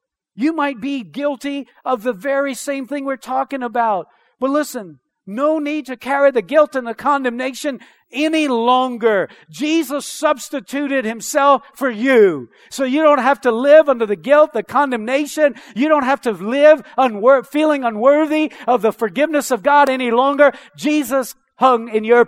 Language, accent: English, American